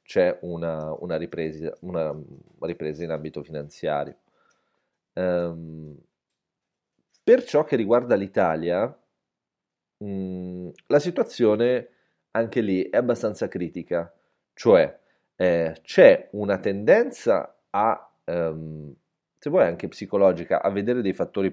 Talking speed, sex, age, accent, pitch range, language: 105 wpm, male, 30-49, native, 85-95 Hz, Italian